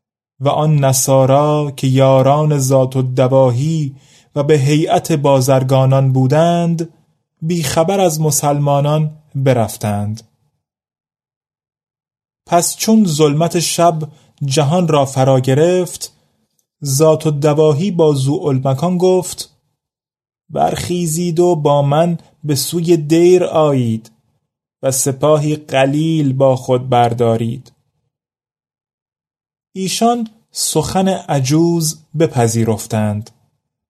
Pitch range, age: 130-165 Hz, 30-49